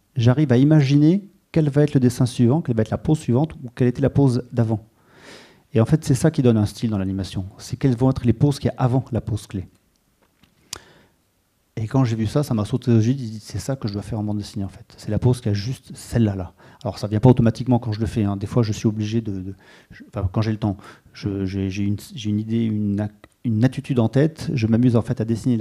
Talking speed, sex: 265 wpm, male